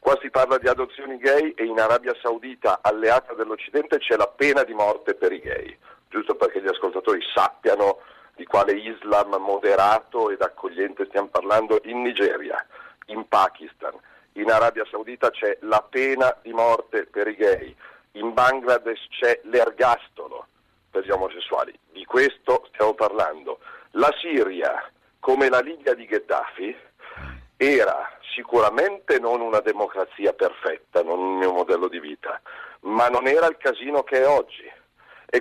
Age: 50-69